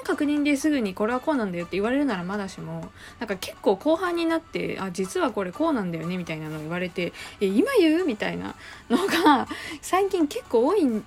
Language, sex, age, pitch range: Japanese, female, 20-39, 175-290 Hz